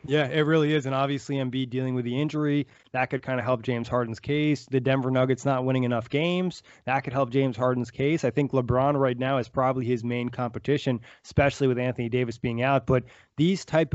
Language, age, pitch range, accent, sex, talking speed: English, 20-39, 125-150 Hz, American, male, 220 wpm